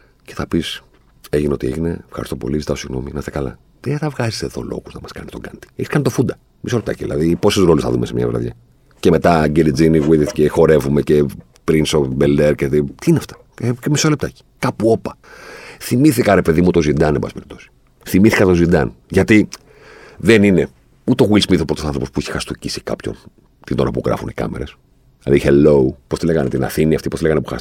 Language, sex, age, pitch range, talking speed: Greek, male, 50-69, 70-110 Hz, 135 wpm